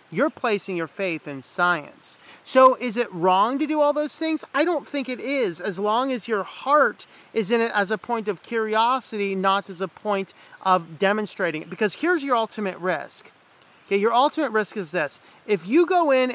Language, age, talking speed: English, 40-59, 200 wpm